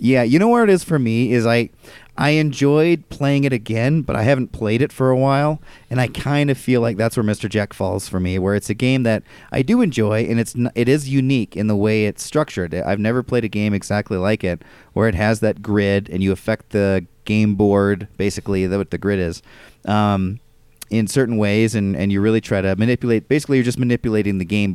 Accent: American